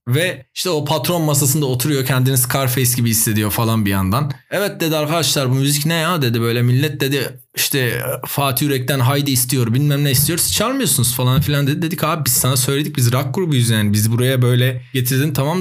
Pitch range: 125-160 Hz